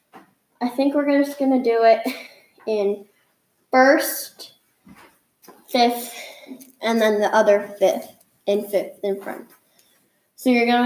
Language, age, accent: English, 10-29, American